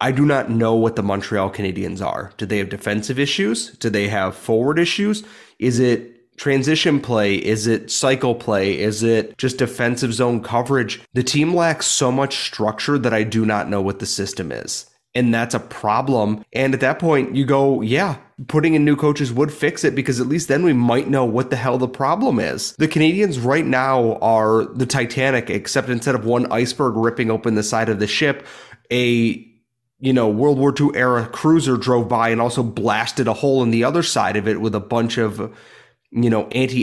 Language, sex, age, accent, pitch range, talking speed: English, male, 30-49, American, 110-135 Hz, 205 wpm